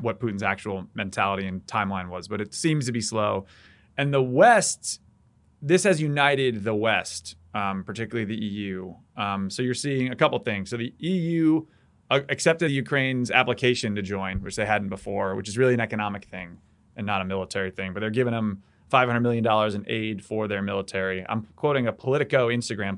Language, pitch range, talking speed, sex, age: English, 100-130 Hz, 190 wpm, male, 30-49